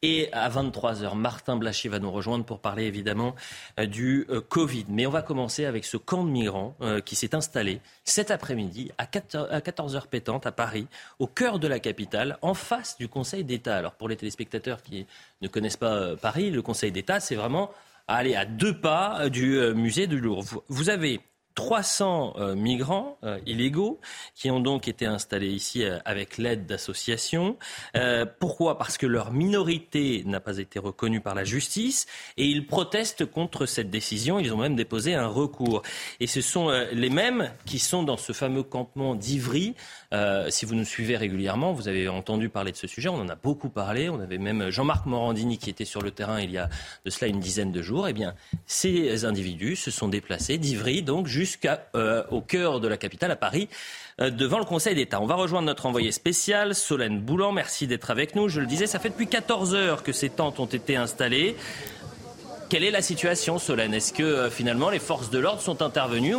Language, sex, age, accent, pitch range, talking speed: French, male, 30-49, French, 110-160 Hz, 195 wpm